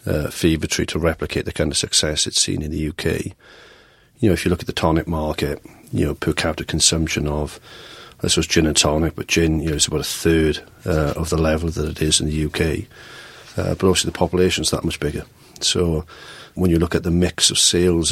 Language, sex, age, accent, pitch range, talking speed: English, male, 40-59, British, 75-85 Hz, 230 wpm